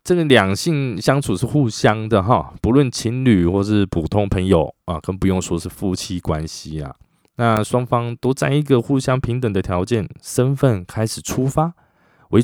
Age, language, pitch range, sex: 20-39, Chinese, 95-130 Hz, male